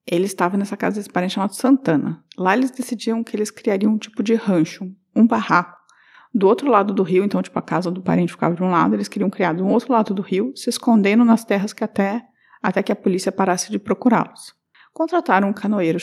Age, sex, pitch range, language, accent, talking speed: 50-69, female, 190-240 Hz, Portuguese, Brazilian, 220 wpm